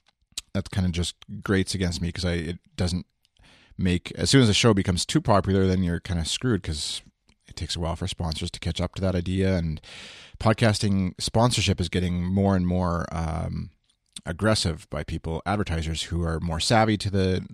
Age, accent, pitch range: 30-49, American, 85-100 Hz